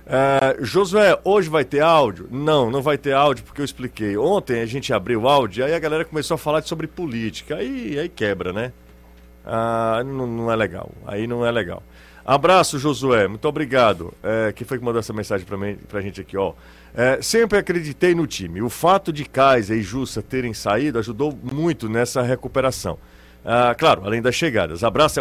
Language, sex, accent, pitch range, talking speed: Portuguese, male, Brazilian, 105-150 Hz, 195 wpm